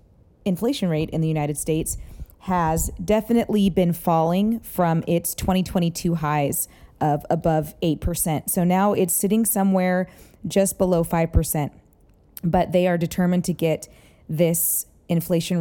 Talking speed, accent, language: 125 wpm, American, English